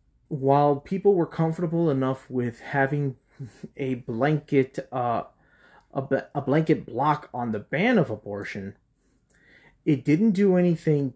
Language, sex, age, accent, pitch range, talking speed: English, male, 30-49, American, 120-150 Hz, 125 wpm